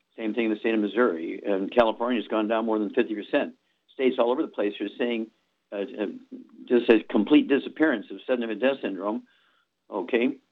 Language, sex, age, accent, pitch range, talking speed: English, male, 50-69, American, 105-125 Hz, 185 wpm